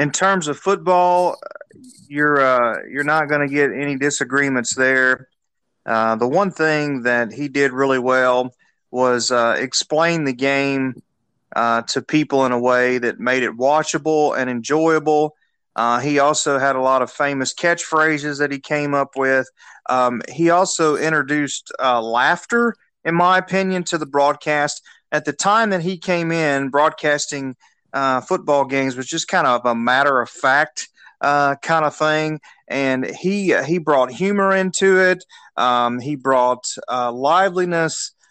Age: 30-49